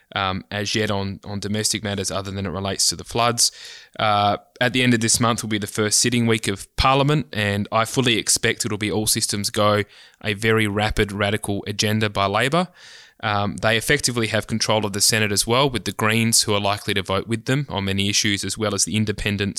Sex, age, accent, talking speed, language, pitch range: male, 20-39, Australian, 225 wpm, English, 100-115 Hz